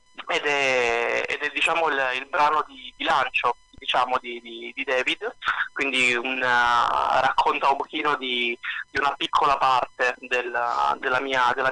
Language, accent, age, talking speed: Italian, native, 20-39, 155 wpm